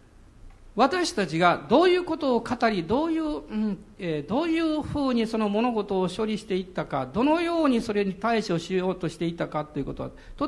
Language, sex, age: Japanese, male, 50-69